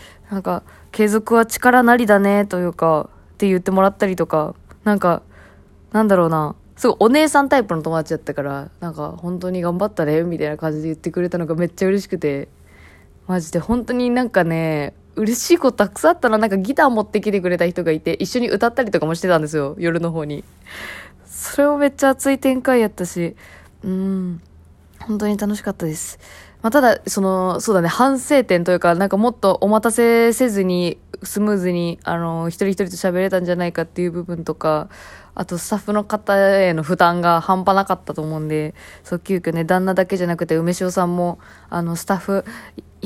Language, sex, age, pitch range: Japanese, female, 20-39, 165-205 Hz